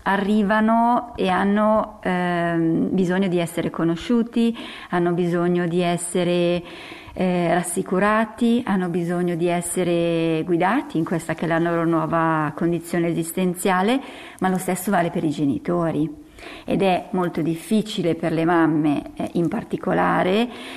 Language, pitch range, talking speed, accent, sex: Italian, 170-220 Hz, 130 wpm, native, female